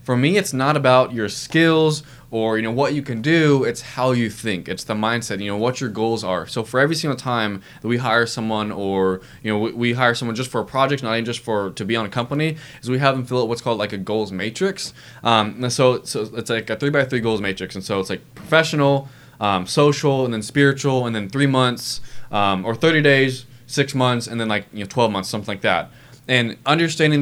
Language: English